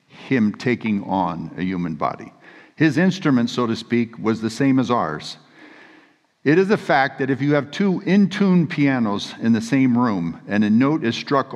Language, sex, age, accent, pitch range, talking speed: English, male, 60-79, American, 110-145 Hz, 185 wpm